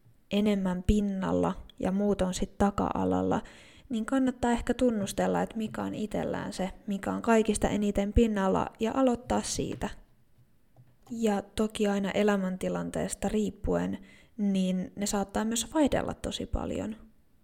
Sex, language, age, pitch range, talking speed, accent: female, Finnish, 20-39, 190-215 Hz, 125 wpm, native